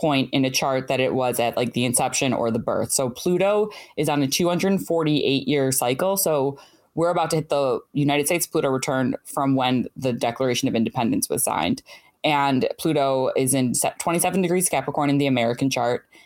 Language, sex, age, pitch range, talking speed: English, female, 10-29, 130-160 Hz, 190 wpm